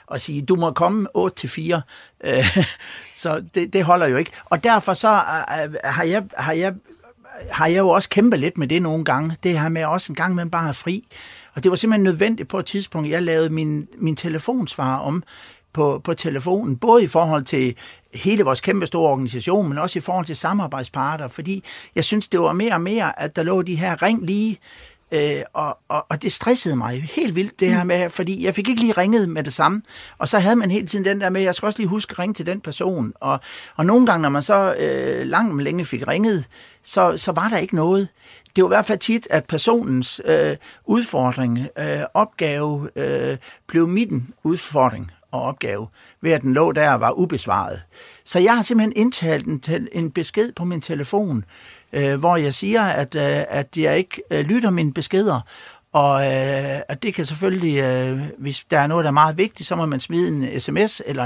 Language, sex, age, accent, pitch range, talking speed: Danish, male, 60-79, native, 150-200 Hz, 215 wpm